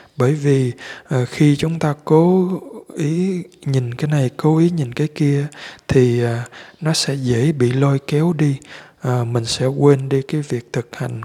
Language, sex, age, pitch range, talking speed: Vietnamese, male, 20-39, 125-155 Hz, 180 wpm